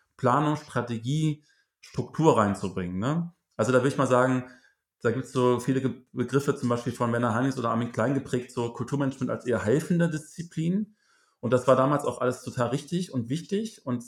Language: German